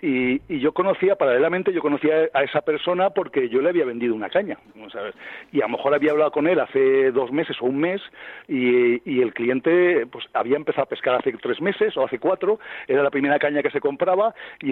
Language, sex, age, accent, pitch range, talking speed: Spanish, male, 50-69, Spanish, 125-170 Hz, 225 wpm